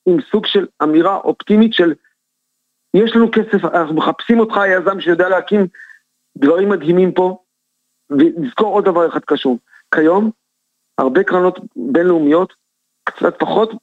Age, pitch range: 40-59, 155-205 Hz